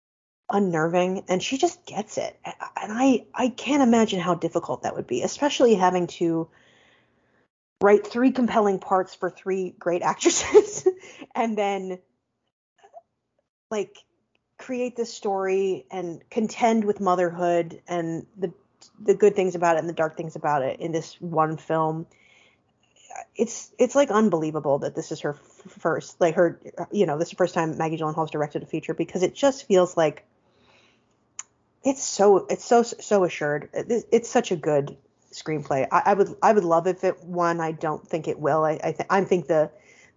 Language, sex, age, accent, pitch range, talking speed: English, female, 30-49, American, 160-210 Hz, 170 wpm